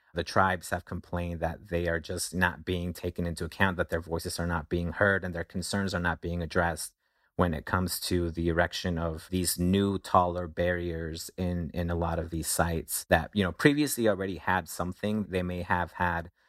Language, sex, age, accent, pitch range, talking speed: English, male, 30-49, American, 85-95 Hz, 205 wpm